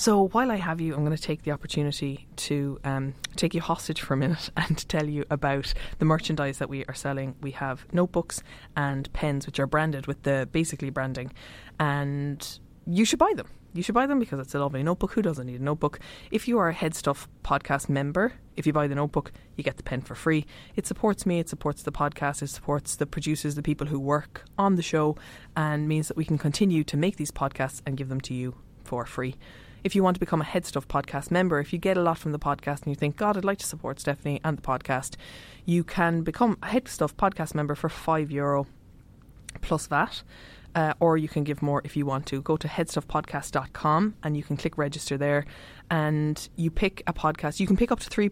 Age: 20-39